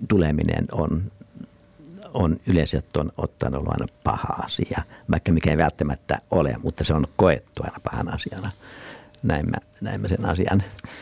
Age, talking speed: 60-79, 140 wpm